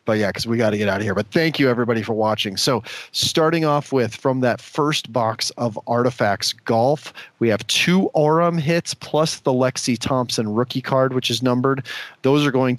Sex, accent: male, American